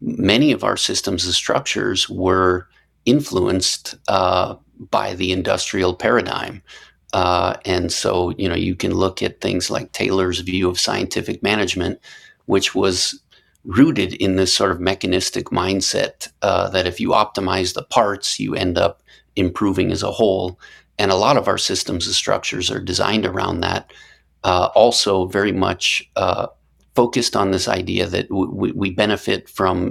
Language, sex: English, male